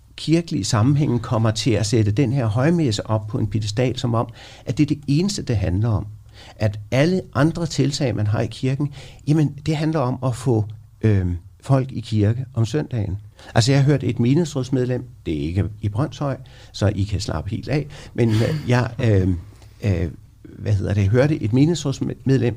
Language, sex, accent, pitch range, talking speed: Danish, male, native, 105-135 Hz, 185 wpm